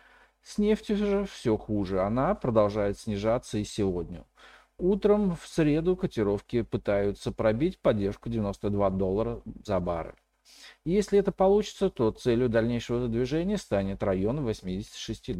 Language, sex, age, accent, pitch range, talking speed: Russian, male, 40-59, native, 100-170 Hz, 120 wpm